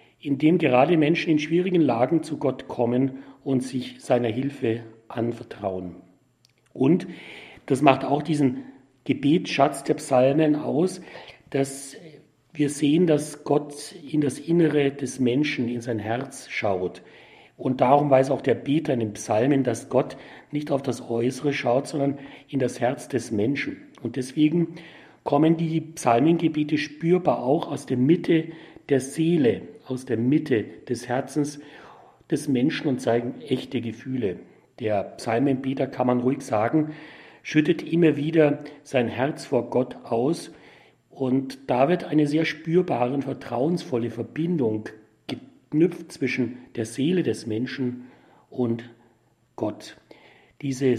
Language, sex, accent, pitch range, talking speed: German, male, German, 125-155 Hz, 135 wpm